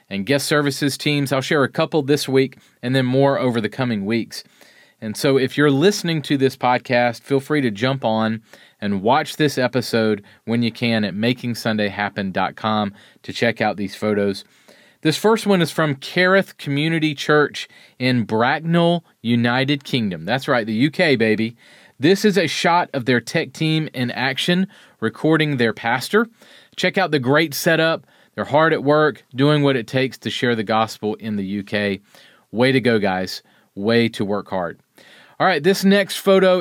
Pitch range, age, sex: 115-150 Hz, 40-59, male